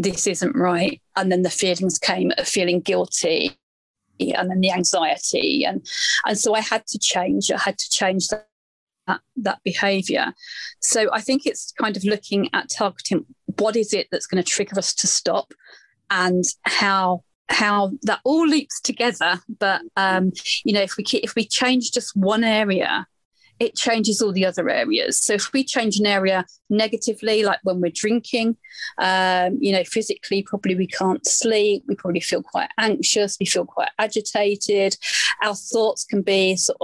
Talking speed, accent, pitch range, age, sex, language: 175 wpm, British, 190-225 Hz, 40-59, female, English